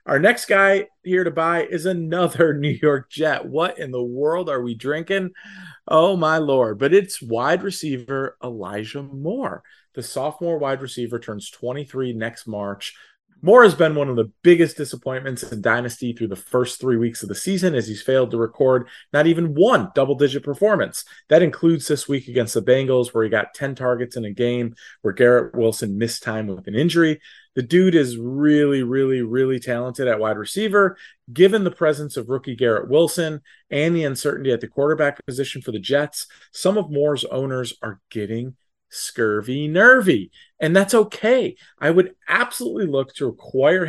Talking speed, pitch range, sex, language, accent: 180 wpm, 125-165 Hz, male, English, American